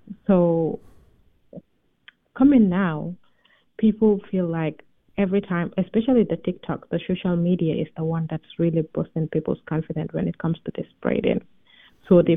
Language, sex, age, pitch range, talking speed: English, female, 30-49, 165-190 Hz, 145 wpm